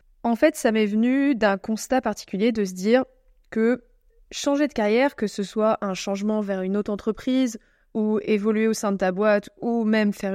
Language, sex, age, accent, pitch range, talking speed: French, female, 20-39, French, 205-275 Hz, 195 wpm